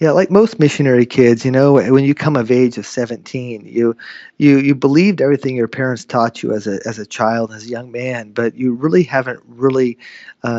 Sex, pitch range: male, 120-145 Hz